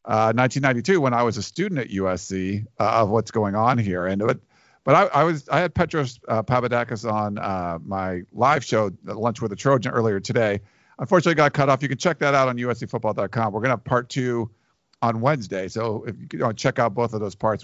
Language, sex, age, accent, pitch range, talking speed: English, male, 50-69, American, 110-140 Hz, 230 wpm